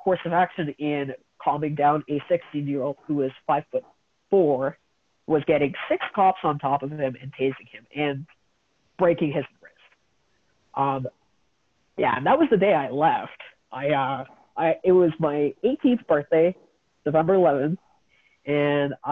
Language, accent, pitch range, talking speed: English, American, 140-175 Hz, 150 wpm